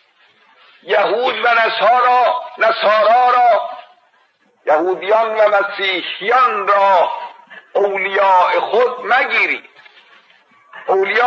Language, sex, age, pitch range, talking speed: Persian, male, 60-79, 215-270 Hz, 70 wpm